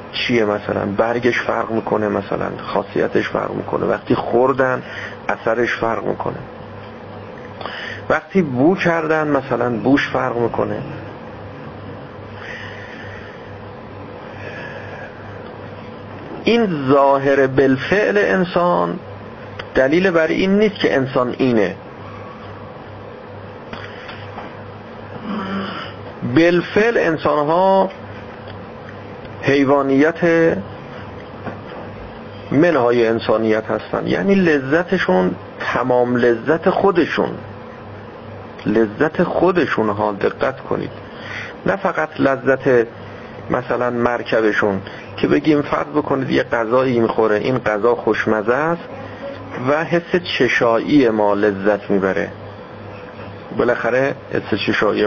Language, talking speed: Persian, 80 wpm